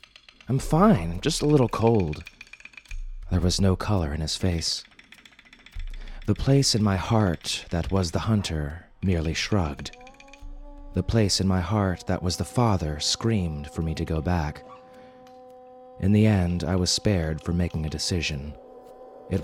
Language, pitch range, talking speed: English, 85-105 Hz, 155 wpm